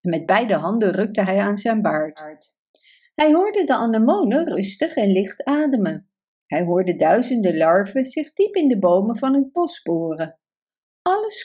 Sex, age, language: female, 50-69, Dutch